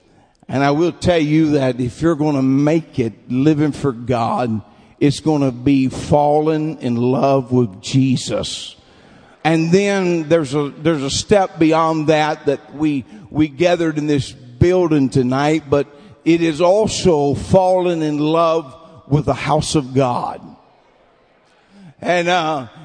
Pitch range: 140-180 Hz